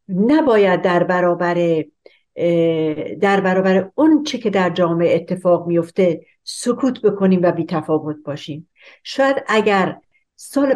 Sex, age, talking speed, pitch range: female, 60-79, 110 wpm, 165-210 Hz